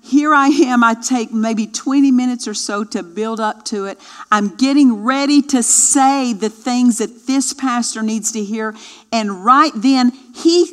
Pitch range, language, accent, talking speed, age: 225-275 Hz, English, American, 180 wpm, 50-69